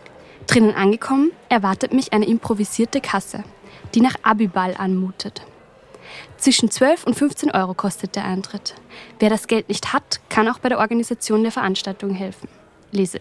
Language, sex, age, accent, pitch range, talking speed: German, female, 20-39, German, 205-245 Hz, 150 wpm